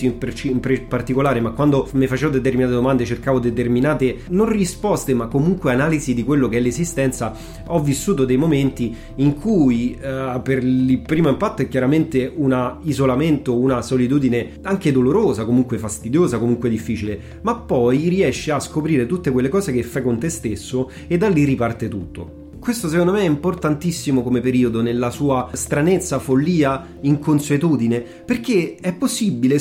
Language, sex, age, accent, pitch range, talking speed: Italian, male, 30-49, native, 125-160 Hz, 155 wpm